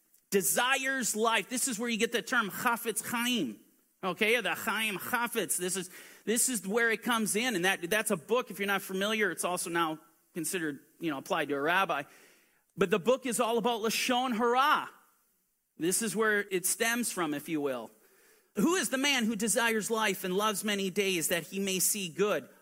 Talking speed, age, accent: 200 wpm, 40-59, American